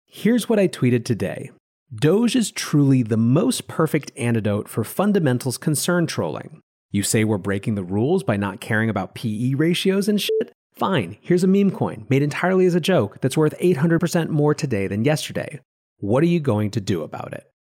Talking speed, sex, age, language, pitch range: 185 wpm, male, 30-49, English, 105-145 Hz